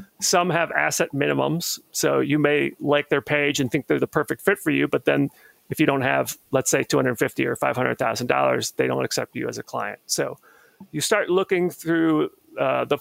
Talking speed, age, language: 210 wpm, 40-59, English